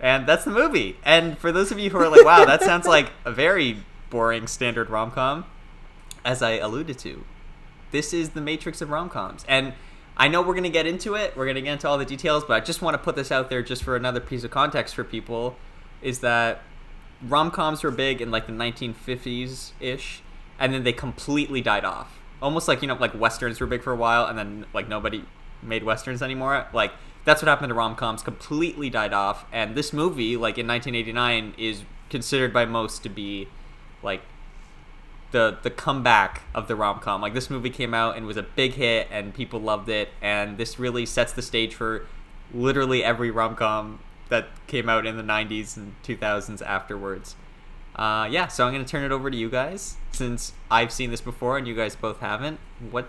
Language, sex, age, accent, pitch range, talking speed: English, male, 20-39, American, 110-135 Hz, 205 wpm